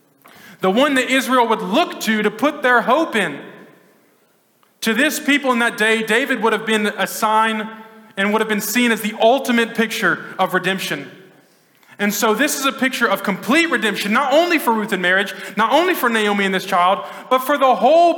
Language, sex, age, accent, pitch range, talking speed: English, male, 20-39, American, 185-235 Hz, 200 wpm